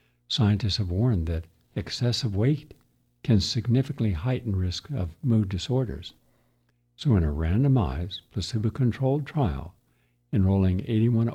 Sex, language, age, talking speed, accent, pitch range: male, English, 60-79, 110 wpm, American, 90-120 Hz